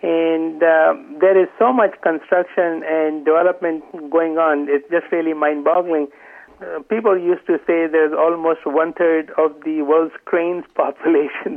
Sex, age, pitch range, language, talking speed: male, 60-79, 145-165 Hz, English, 145 wpm